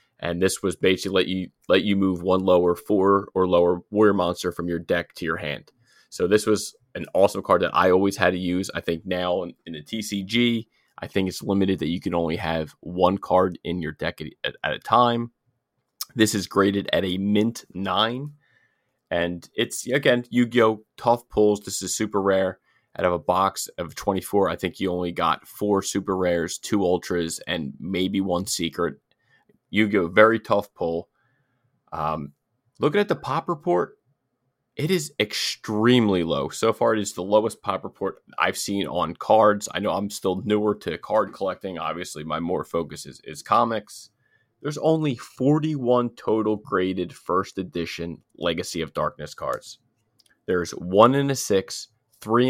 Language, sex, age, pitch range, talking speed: English, male, 20-39, 90-115 Hz, 175 wpm